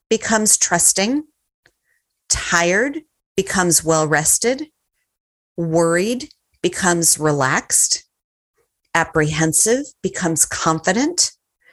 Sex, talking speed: female, 55 wpm